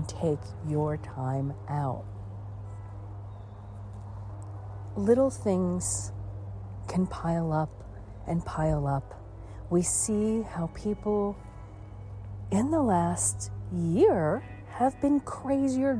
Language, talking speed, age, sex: English, 85 wpm, 40-59, female